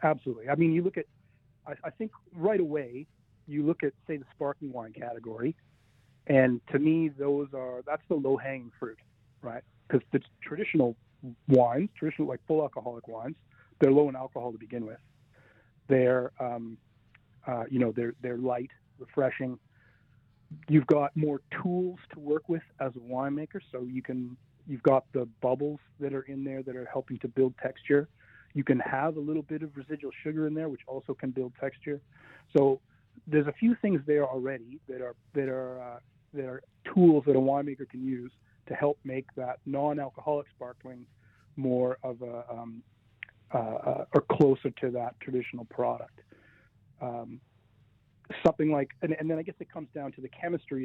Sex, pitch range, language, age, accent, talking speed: male, 125-145 Hz, English, 40-59, American, 175 wpm